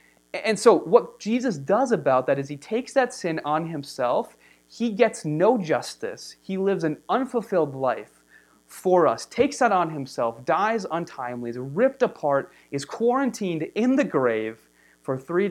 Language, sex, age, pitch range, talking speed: English, male, 30-49, 140-190 Hz, 160 wpm